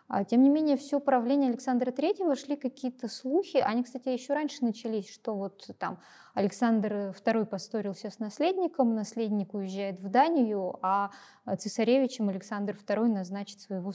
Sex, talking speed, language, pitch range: female, 140 wpm, Russian, 190-240 Hz